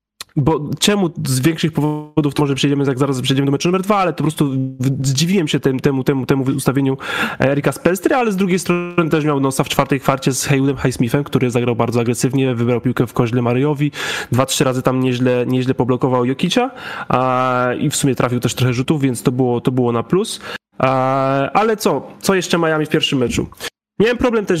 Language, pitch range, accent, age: Polish, 130-165 Hz, native, 20-39